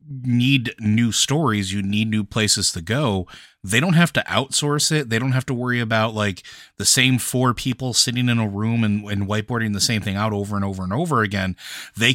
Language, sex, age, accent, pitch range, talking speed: English, male, 30-49, American, 100-125 Hz, 215 wpm